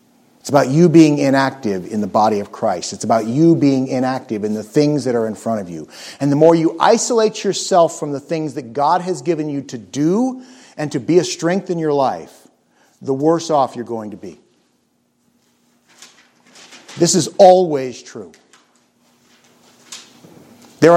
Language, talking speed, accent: English, 170 wpm, American